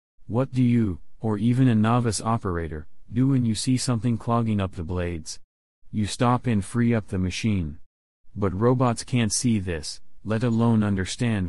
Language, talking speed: English, 165 wpm